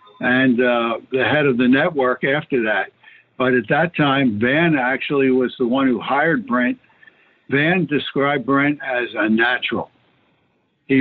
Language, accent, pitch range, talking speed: English, American, 130-155 Hz, 155 wpm